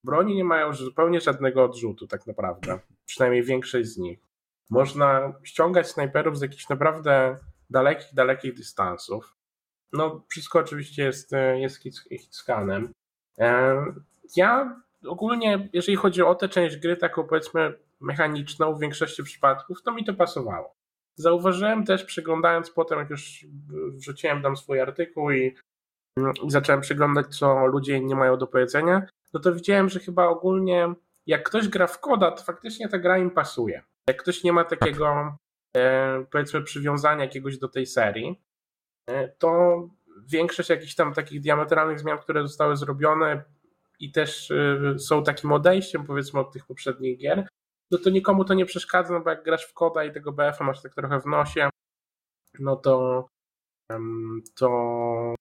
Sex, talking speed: male, 150 wpm